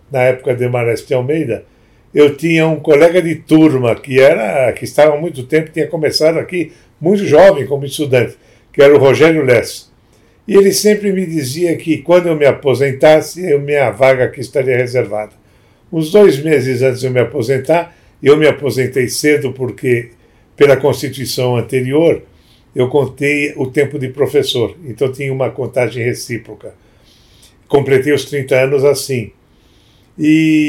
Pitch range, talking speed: 125-160 Hz, 155 wpm